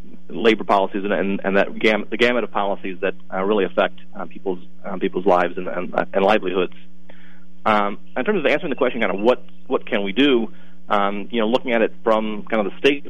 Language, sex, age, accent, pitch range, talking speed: English, male, 30-49, American, 90-115 Hz, 225 wpm